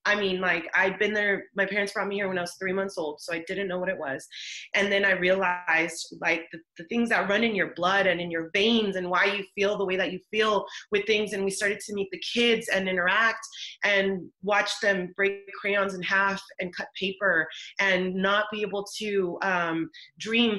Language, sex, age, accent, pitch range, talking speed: English, female, 30-49, American, 185-210 Hz, 225 wpm